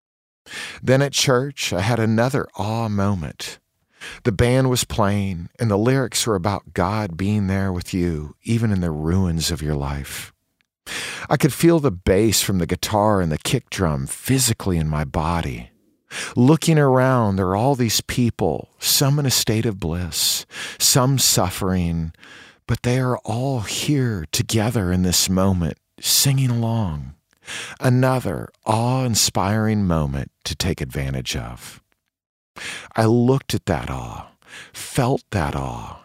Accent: American